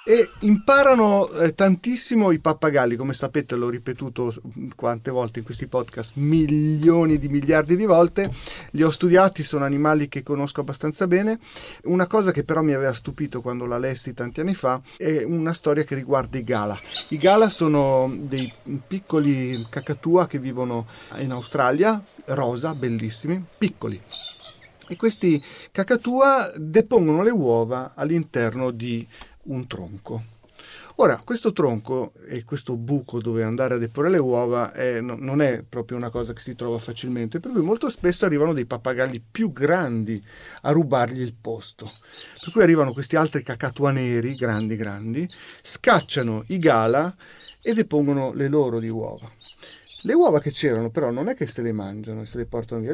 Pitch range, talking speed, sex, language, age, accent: 120-165 Hz, 160 wpm, male, Italian, 40-59, native